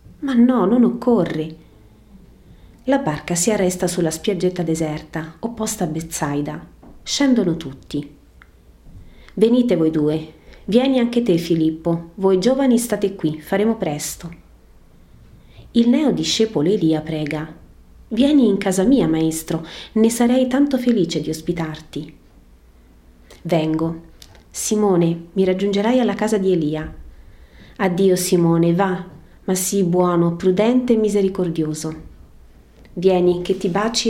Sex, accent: female, native